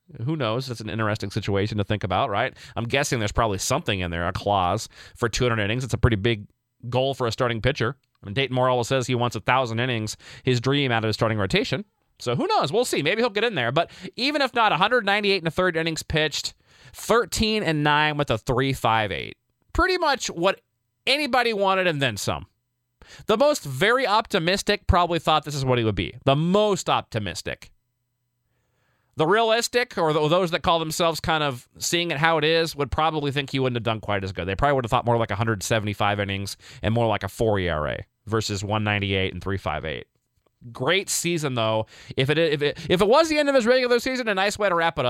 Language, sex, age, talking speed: English, male, 30-49, 215 wpm